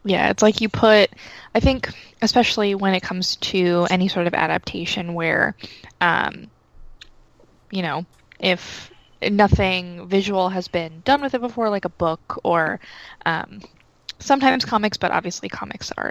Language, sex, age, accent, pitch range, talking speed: English, female, 20-39, American, 185-225 Hz, 150 wpm